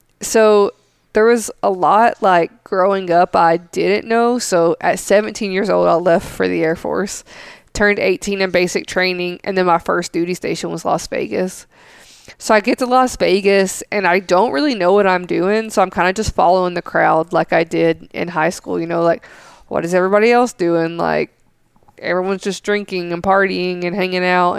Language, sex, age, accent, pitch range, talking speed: English, female, 20-39, American, 170-200 Hz, 200 wpm